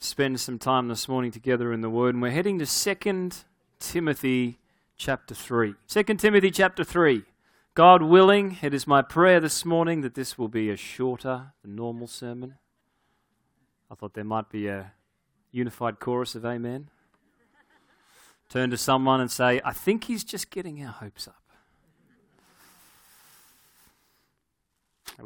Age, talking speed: 30-49, 145 wpm